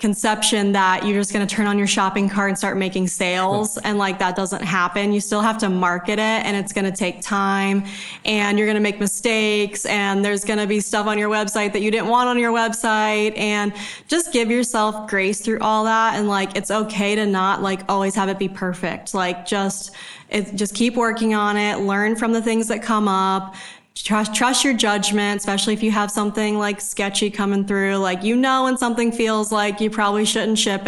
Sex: female